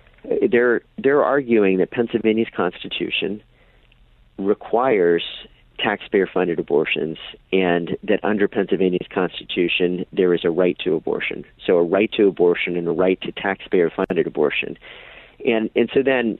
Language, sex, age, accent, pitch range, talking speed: English, male, 40-59, American, 90-105 Hz, 135 wpm